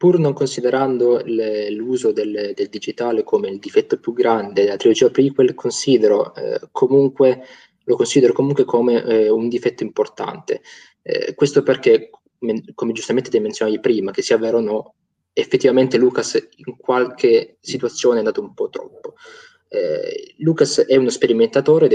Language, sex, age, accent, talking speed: Italian, male, 20-39, native, 155 wpm